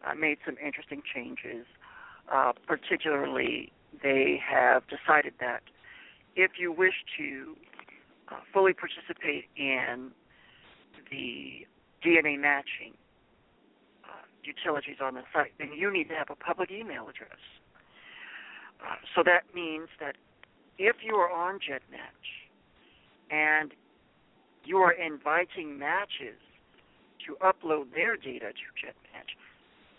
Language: English